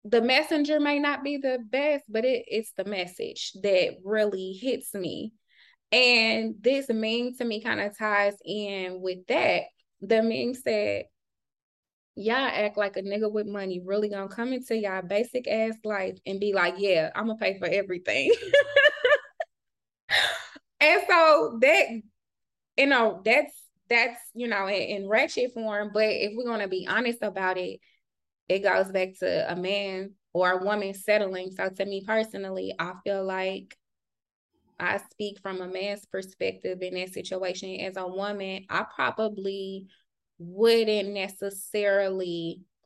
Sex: female